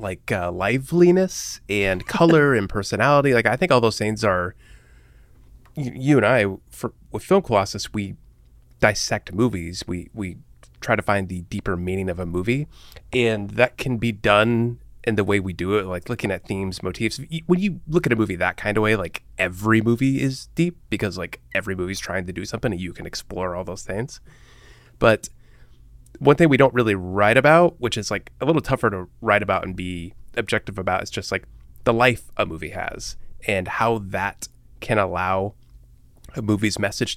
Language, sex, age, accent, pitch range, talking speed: English, male, 20-39, American, 90-120 Hz, 195 wpm